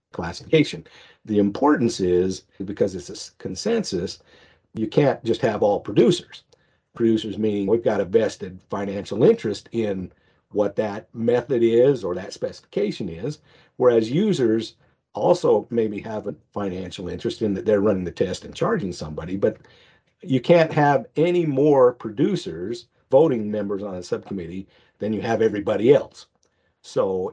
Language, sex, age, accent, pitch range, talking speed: English, male, 50-69, American, 95-120 Hz, 145 wpm